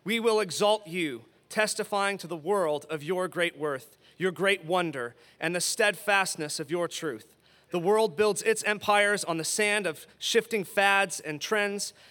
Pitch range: 170-205 Hz